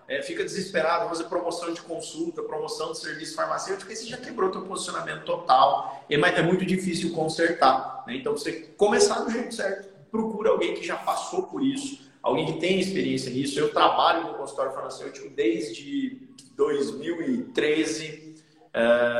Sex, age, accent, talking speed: male, 40-59, Brazilian, 155 wpm